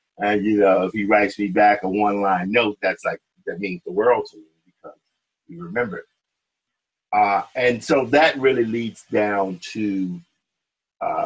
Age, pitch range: 50-69, 95-120 Hz